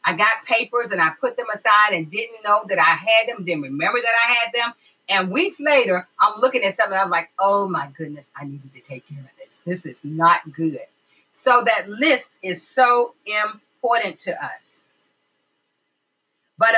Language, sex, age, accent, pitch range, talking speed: English, female, 40-59, American, 205-275 Hz, 195 wpm